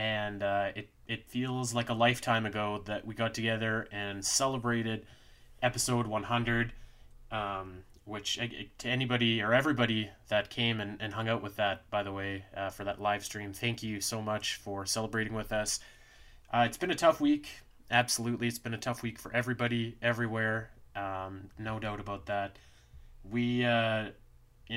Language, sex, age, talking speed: English, male, 20-39, 170 wpm